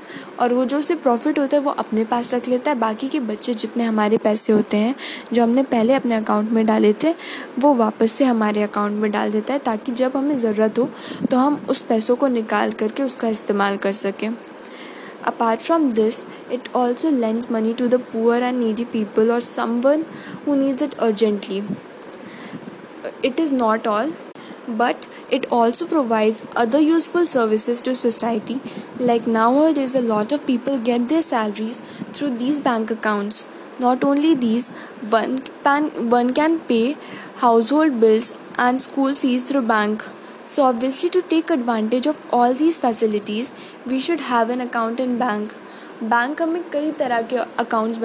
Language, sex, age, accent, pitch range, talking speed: English, female, 10-29, Indian, 225-275 Hz, 165 wpm